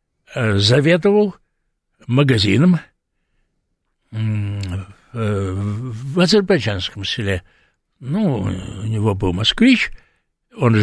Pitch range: 110-170 Hz